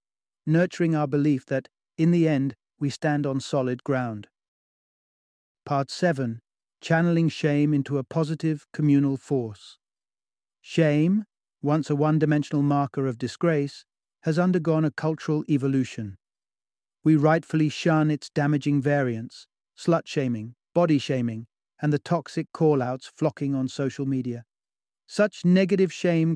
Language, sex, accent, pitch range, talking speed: English, male, British, 130-160 Hz, 120 wpm